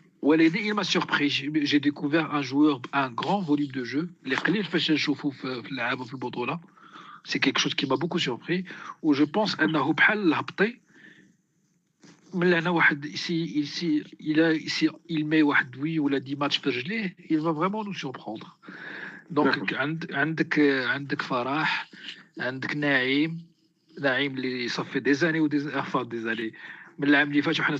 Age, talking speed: 50-69, 175 wpm